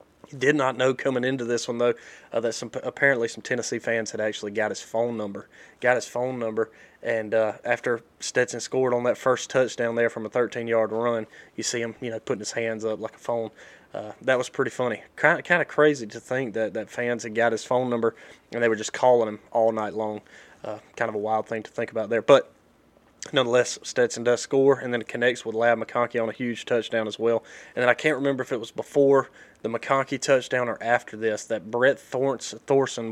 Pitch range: 115-130 Hz